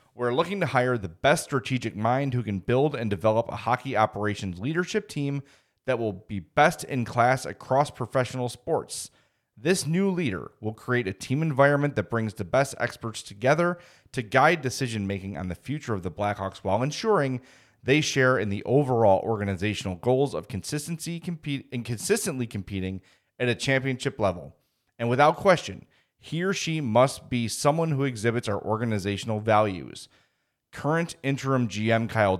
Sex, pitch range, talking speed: male, 105-145 Hz, 160 wpm